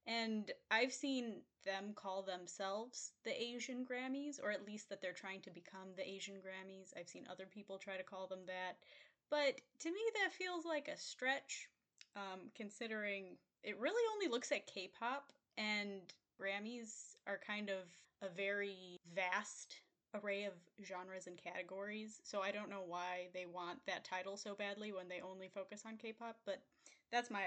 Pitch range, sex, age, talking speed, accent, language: 190-245 Hz, female, 10-29, 170 wpm, American, English